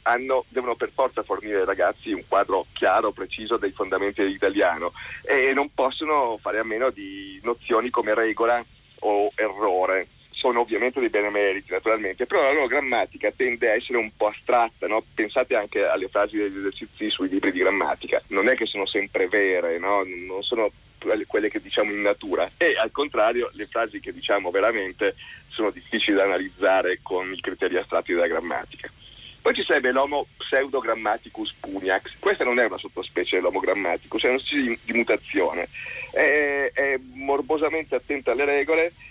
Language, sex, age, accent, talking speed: Italian, male, 30-49, native, 165 wpm